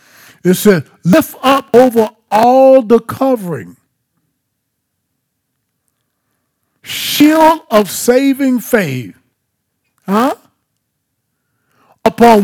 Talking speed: 70 wpm